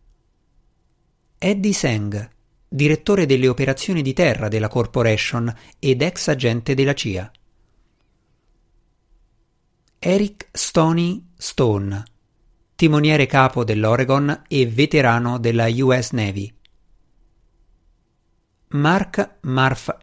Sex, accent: male, native